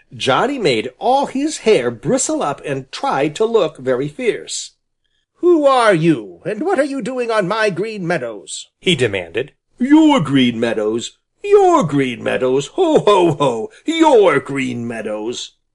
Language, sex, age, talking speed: English, male, 50-69, 150 wpm